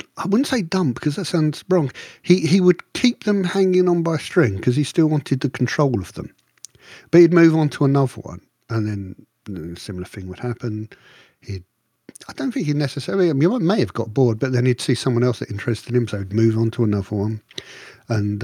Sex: male